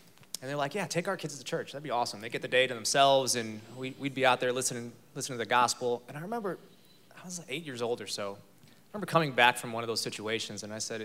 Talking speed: 275 wpm